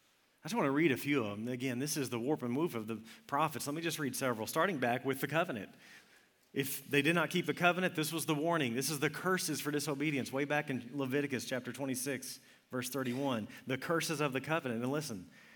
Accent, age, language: American, 40-59, English